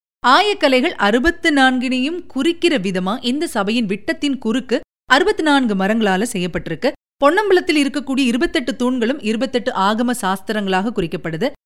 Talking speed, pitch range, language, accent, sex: 110 wpm, 205-295 Hz, Tamil, native, female